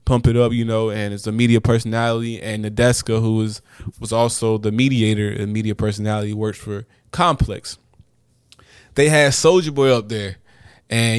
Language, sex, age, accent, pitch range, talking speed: English, male, 20-39, American, 110-140 Hz, 165 wpm